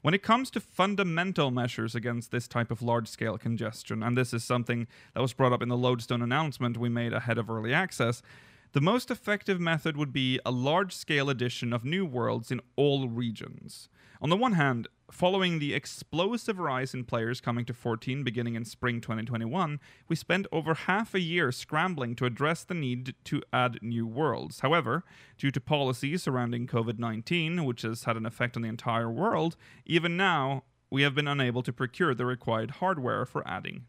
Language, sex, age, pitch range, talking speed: English, male, 30-49, 120-160 Hz, 185 wpm